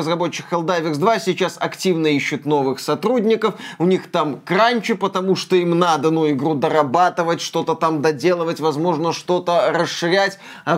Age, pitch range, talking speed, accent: 20-39, 155-200 Hz, 145 wpm, native